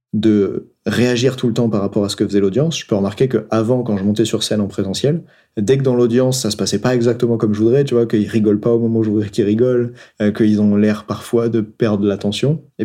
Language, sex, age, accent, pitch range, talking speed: French, male, 30-49, French, 105-125 Hz, 265 wpm